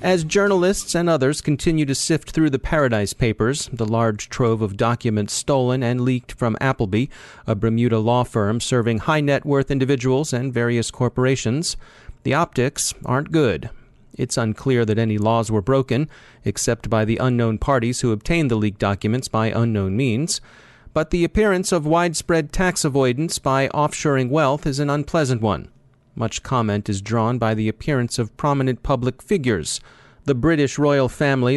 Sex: male